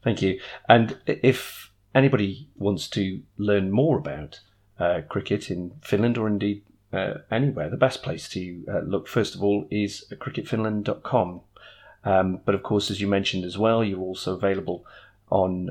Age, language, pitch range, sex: 30-49, English, 95-115 Hz, male